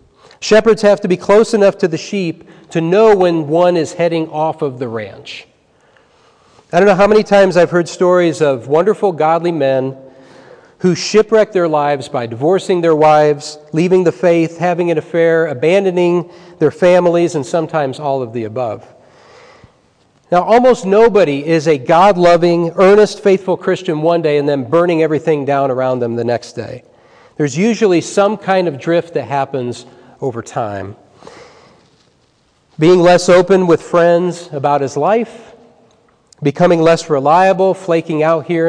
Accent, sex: American, male